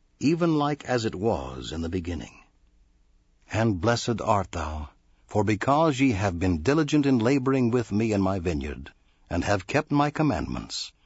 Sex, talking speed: male, 165 wpm